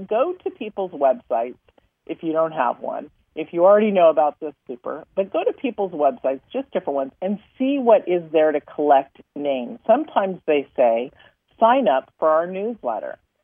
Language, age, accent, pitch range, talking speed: English, 40-59, American, 140-195 Hz, 180 wpm